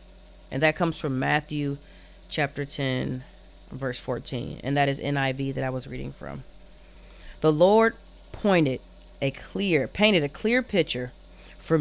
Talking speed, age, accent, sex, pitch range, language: 140 wpm, 30-49, American, female, 135-175 Hz, English